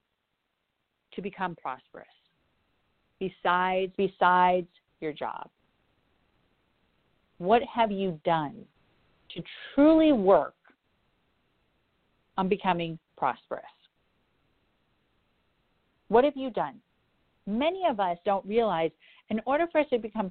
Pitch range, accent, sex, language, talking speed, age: 175-220 Hz, American, female, English, 95 wpm, 50-69